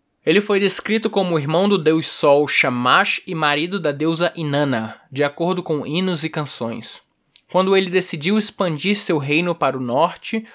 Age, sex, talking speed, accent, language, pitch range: 10-29, male, 165 wpm, Brazilian, Portuguese, 140-170 Hz